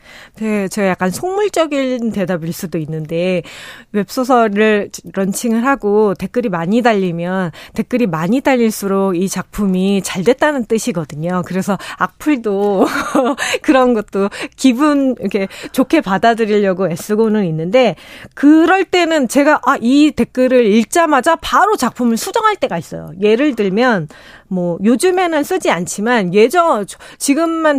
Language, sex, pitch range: Korean, female, 195-280 Hz